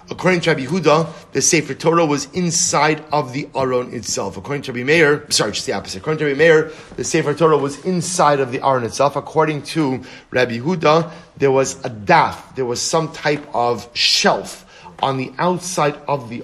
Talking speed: 195 wpm